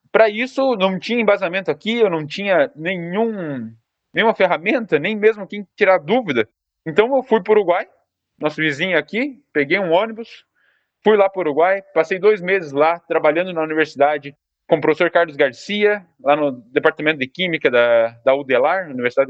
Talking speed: 170 wpm